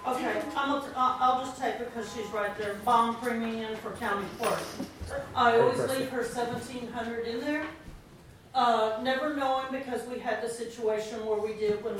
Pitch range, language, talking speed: 210-245 Hz, English, 175 wpm